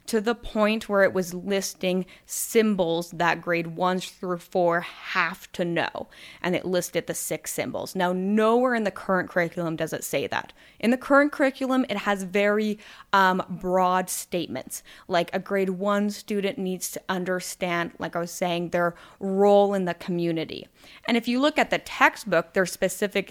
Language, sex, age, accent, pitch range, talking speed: English, female, 20-39, American, 170-205 Hz, 175 wpm